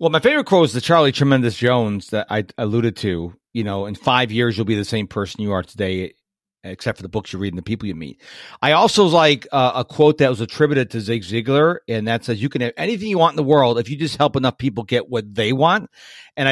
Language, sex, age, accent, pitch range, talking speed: English, male, 40-59, American, 115-150 Hz, 260 wpm